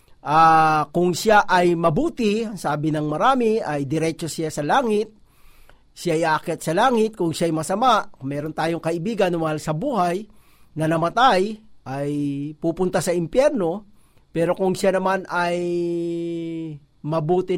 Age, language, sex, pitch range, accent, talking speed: 40-59, Filipino, male, 155-200 Hz, native, 130 wpm